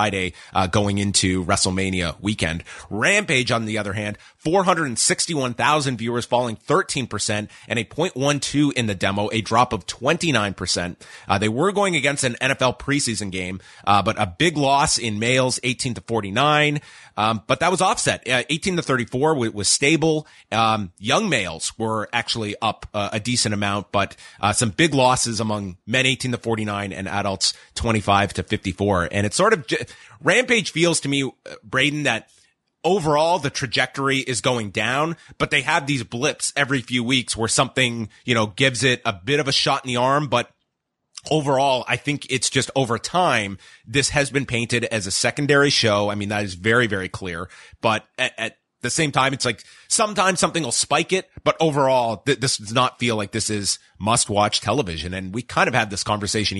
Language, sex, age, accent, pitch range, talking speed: English, male, 30-49, American, 105-140 Hz, 190 wpm